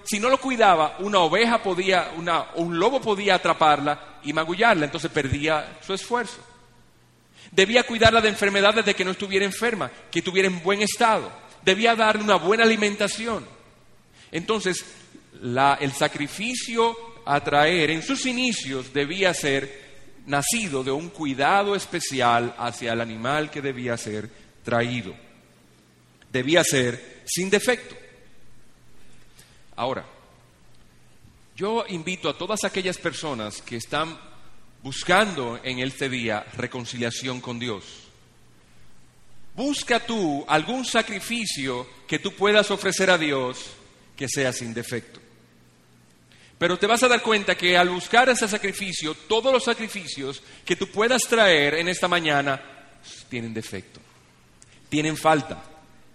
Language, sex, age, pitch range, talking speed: Spanish, male, 40-59, 130-200 Hz, 125 wpm